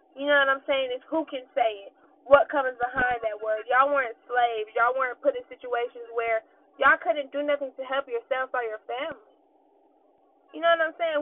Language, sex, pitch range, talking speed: English, female, 245-315 Hz, 210 wpm